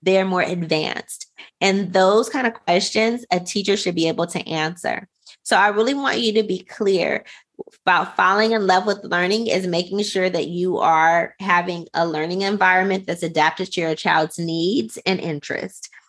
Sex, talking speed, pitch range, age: female, 175 wpm, 170-200 Hz, 20-39